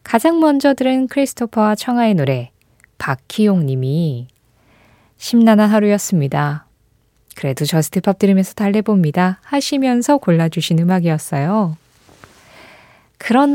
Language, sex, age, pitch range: Korean, female, 20-39, 155-225 Hz